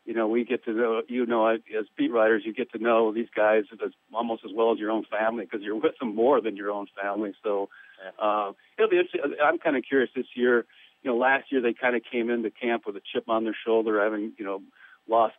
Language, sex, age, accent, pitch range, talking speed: English, male, 50-69, American, 105-120 Hz, 250 wpm